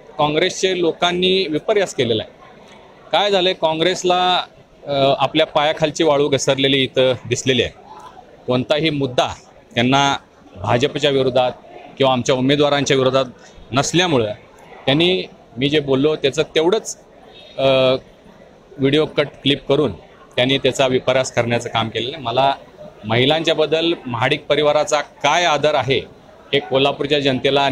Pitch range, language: 130-170 Hz, Marathi